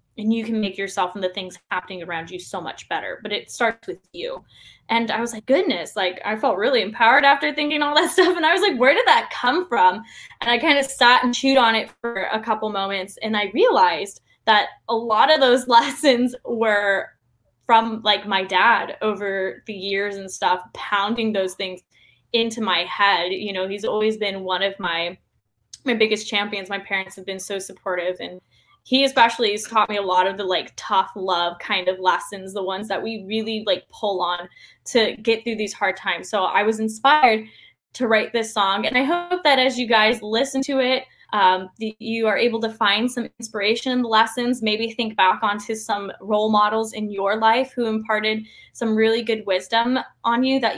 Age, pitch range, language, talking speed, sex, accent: 10-29, 195-235 Hz, English, 205 wpm, female, American